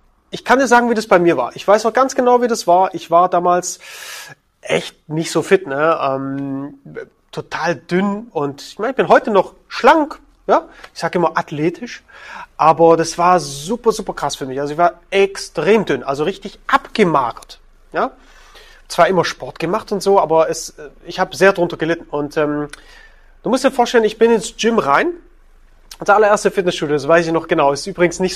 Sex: male